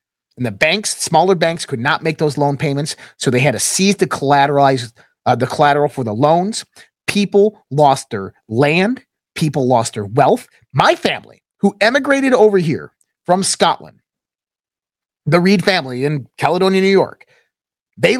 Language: English